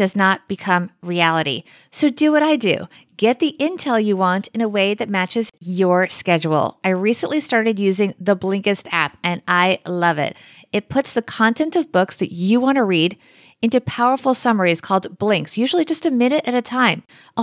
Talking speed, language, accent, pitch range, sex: 190 wpm, English, American, 200-270 Hz, female